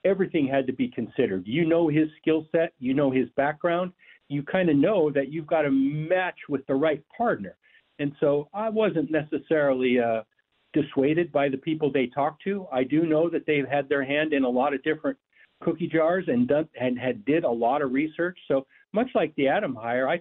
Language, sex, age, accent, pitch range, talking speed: English, male, 50-69, American, 135-165 Hz, 210 wpm